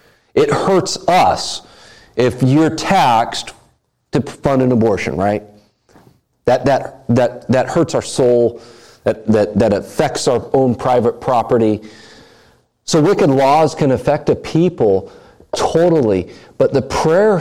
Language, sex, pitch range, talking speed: English, male, 105-135 Hz, 125 wpm